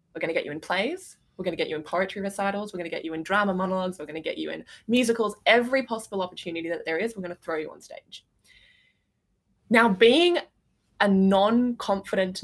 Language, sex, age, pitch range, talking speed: English, female, 20-39, 170-210 Hz, 225 wpm